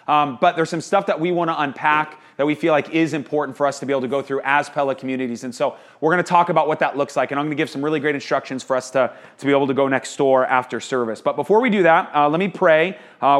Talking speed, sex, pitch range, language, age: 295 wpm, male, 125-165 Hz, English, 30-49